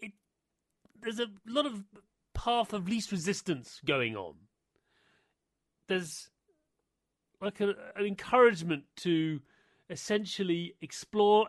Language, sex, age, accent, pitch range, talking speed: English, male, 40-59, British, 150-205 Hz, 90 wpm